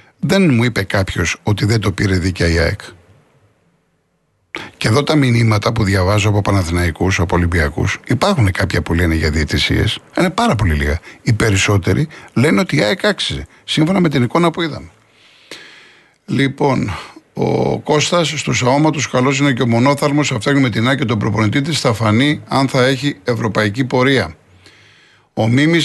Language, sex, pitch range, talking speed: Greek, male, 110-145 Hz, 165 wpm